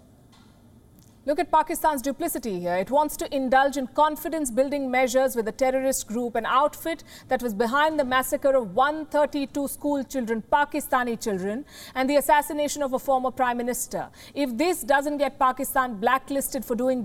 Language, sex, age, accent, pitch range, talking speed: English, female, 50-69, Indian, 235-285 Hz, 160 wpm